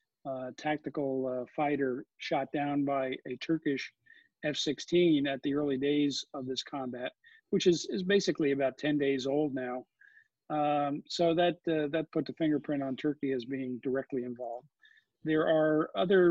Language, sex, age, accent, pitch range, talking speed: English, male, 50-69, American, 130-160 Hz, 160 wpm